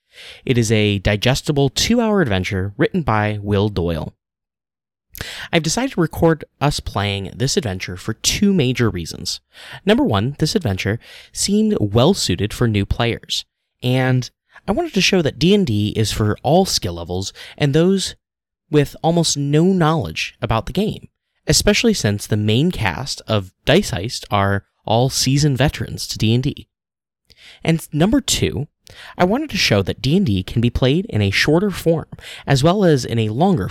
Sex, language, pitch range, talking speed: male, English, 100-160 Hz, 155 wpm